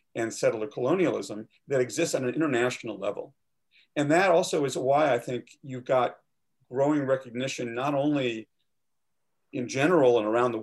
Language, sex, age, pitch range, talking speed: English, male, 40-59, 110-145 Hz, 150 wpm